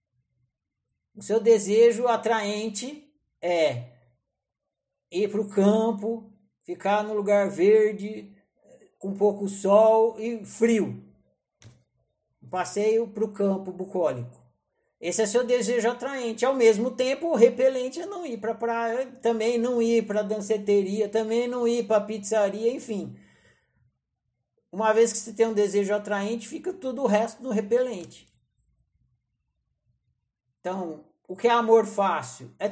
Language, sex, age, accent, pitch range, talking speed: Portuguese, male, 60-79, Brazilian, 190-240 Hz, 130 wpm